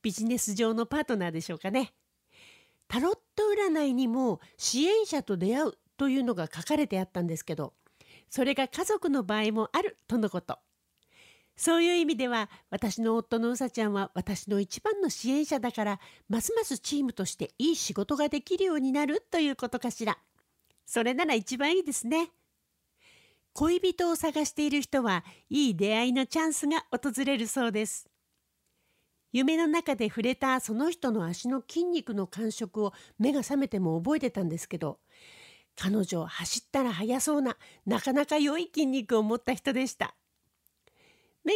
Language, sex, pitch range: Japanese, female, 215-300 Hz